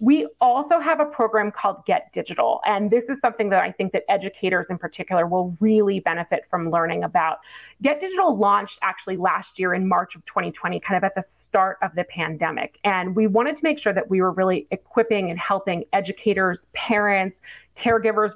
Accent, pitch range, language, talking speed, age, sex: American, 185-220 Hz, English, 195 wpm, 30-49, female